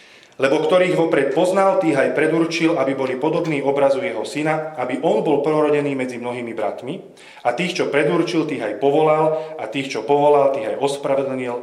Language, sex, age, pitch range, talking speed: Slovak, male, 30-49, 115-155 Hz, 175 wpm